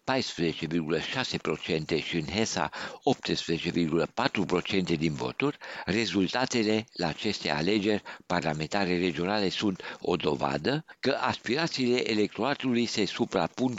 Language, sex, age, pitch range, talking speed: Romanian, male, 60-79, 90-115 Hz, 85 wpm